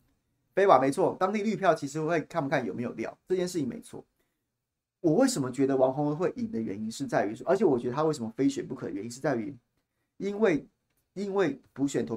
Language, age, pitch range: Chinese, 30-49, 120-160 Hz